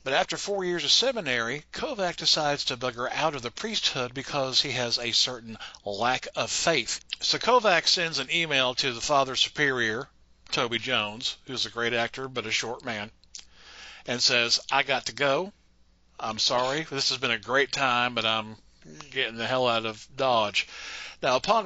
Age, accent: 50-69, American